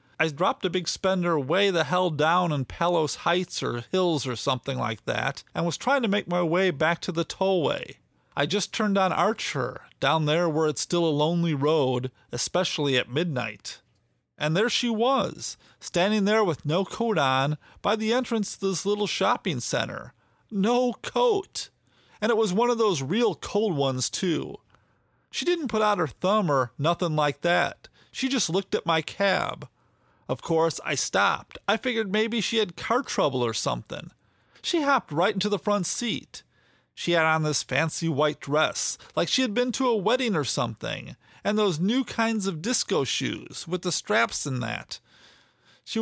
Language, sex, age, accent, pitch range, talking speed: English, male, 40-59, American, 150-215 Hz, 185 wpm